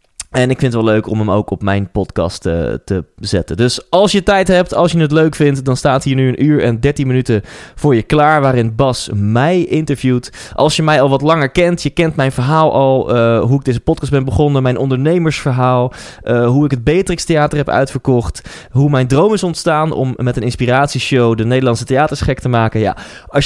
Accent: Dutch